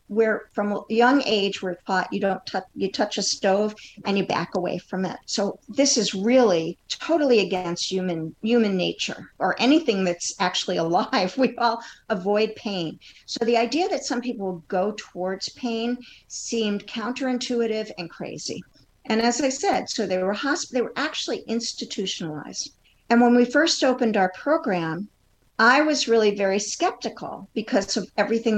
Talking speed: 165 wpm